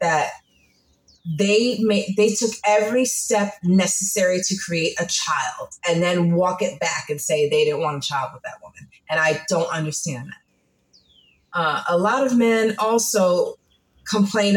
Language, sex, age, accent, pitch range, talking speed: English, female, 20-39, American, 160-210 Hz, 160 wpm